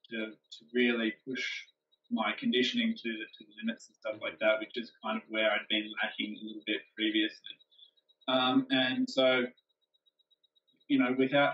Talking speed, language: 165 wpm, English